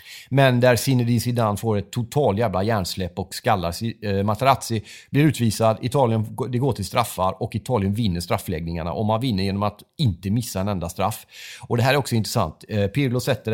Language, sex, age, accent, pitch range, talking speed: Swedish, male, 30-49, native, 100-130 Hz, 180 wpm